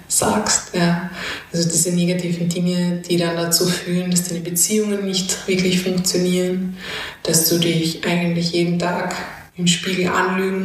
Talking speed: 140 wpm